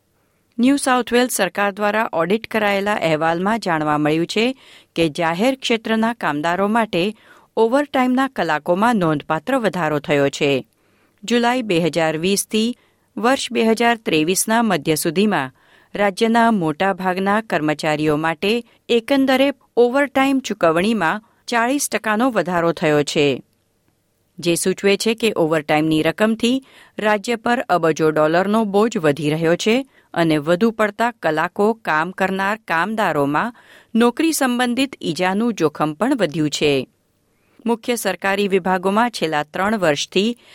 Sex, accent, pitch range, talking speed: female, native, 160-230 Hz, 110 wpm